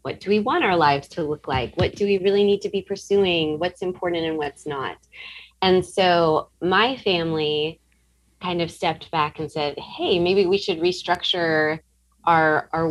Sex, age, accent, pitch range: female, 20-39, American, 145-175 Hz